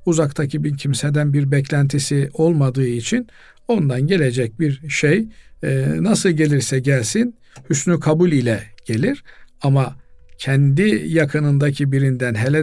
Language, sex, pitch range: Turkish, male, 135-160 Hz